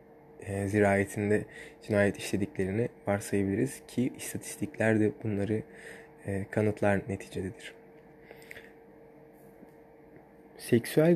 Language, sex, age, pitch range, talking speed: Turkish, male, 20-39, 105-130 Hz, 60 wpm